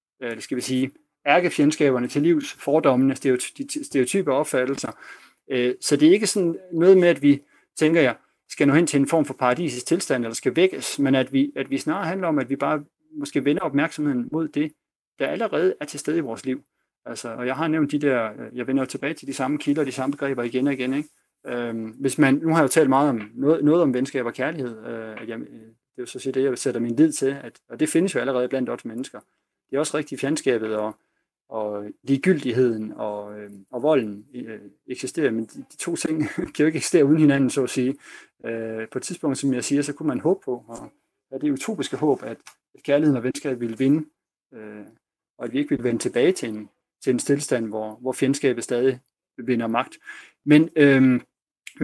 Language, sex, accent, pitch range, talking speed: Danish, male, native, 125-150 Hz, 210 wpm